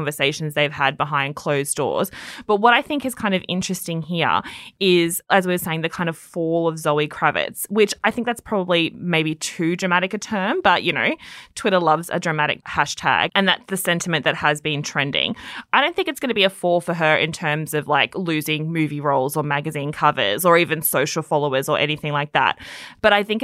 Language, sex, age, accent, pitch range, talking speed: English, female, 20-39, Australian, 150-175 Hz, 220 wpm